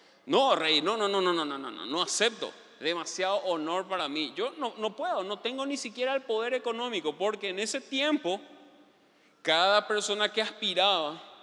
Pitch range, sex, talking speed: 185-255 Hz, male, 180 wpm